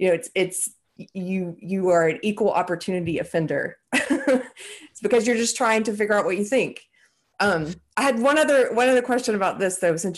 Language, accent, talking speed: English, American, 200 wpm